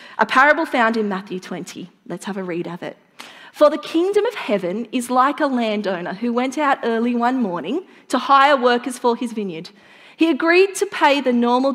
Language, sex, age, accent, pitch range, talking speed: English, female, 30-49, Australian, 205-275 Hz, 200 wpm